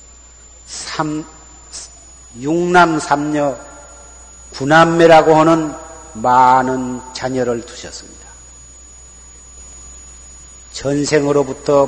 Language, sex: Korean, male